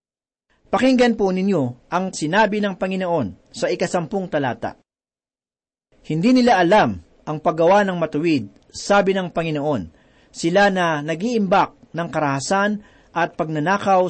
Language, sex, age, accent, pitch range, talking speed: Filipino, male, 40-59, native, 155-200 Hz, 115 wpm